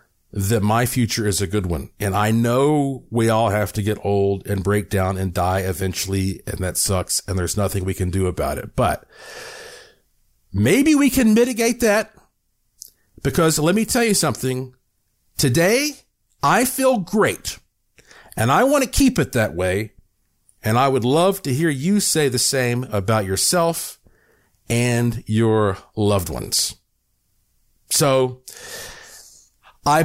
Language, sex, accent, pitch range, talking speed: English, male, American, 100-155 Hz, 150 wpm